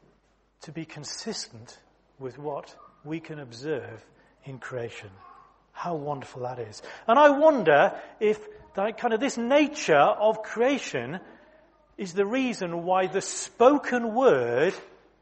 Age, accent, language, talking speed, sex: 40-59, British, English, 125 wpm, male